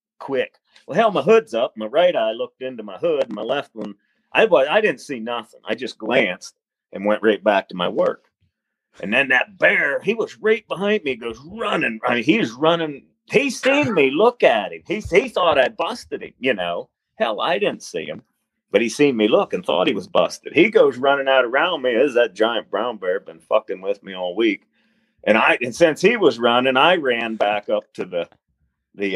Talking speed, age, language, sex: 220 wpm, 40-59, English, male